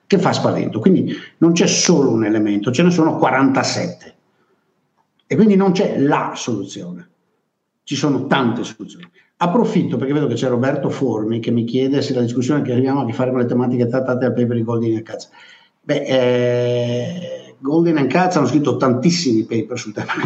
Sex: male